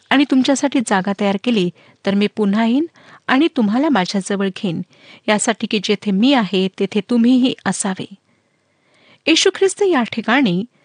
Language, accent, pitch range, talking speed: Marathi, native, 200-270 Hz, 55 wpm